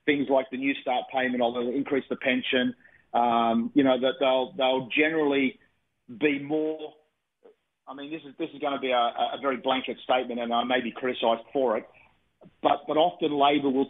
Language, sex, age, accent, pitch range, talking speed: English, male, 40-59, Australian, 125-145 Hz, 200 wpm